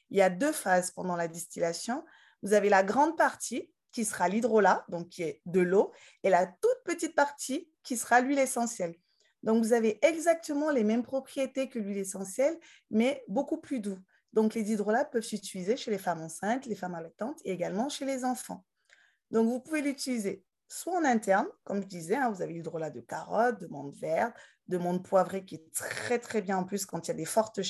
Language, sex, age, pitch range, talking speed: French, female, 20-39, 190-245 Hz, 210 wpm